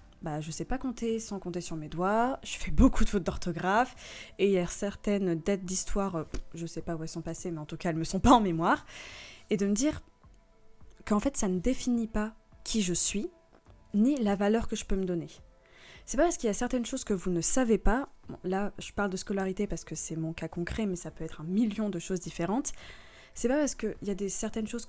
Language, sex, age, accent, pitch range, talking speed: French, female, 20-39, French, 175-230 Hz, 265 wpm